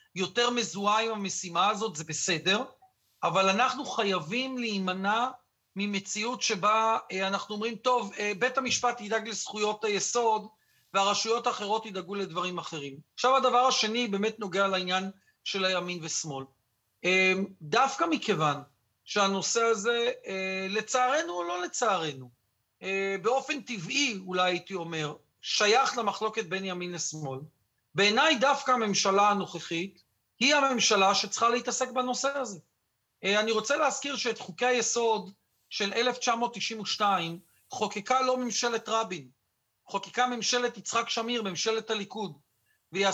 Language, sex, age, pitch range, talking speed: Hebrew, male, 40-59, 185-235 Hz, 115 wpm